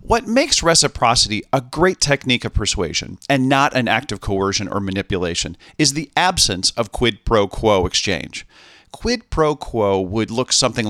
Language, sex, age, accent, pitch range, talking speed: English, male, 40-59, American, 105-155 Hz, 165 wpm